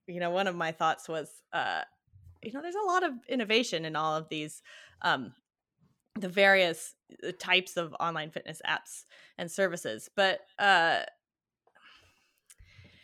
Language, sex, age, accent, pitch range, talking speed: English, female, 20-39, American, 150-190 Hz, 145 wpm